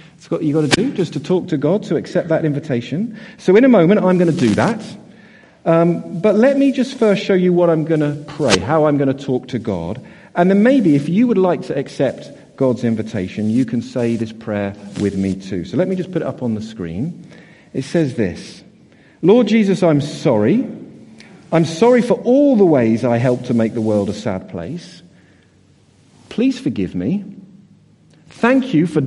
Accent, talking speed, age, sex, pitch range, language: British, 210 wpm, 50-69, male, 115-190 Hz, English